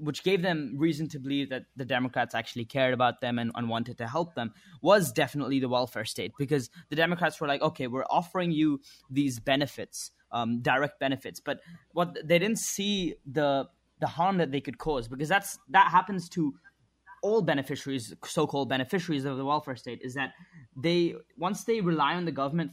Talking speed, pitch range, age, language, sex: 195 wpm, 135-165 Hz, 20-39, English, male